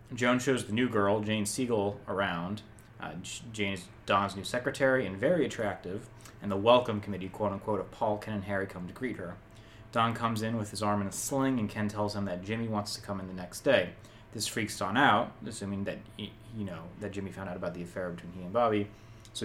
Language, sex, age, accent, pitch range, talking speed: English, male, 20-39, American, 100-115 Hz, 225 wpm